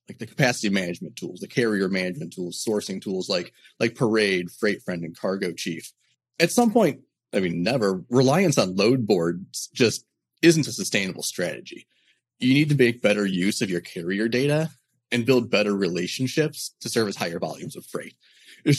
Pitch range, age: 95-145 Hz, 30-49